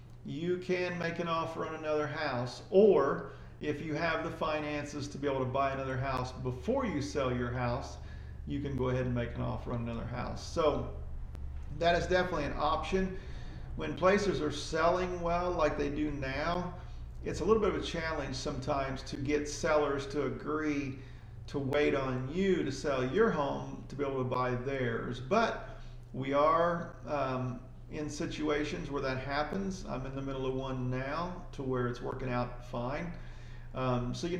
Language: English